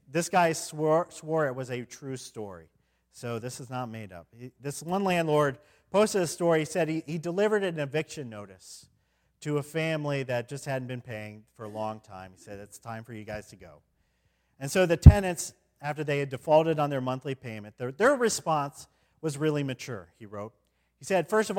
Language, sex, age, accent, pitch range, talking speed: English, male, 40-59, American, 110-160 Hz, 205 wpm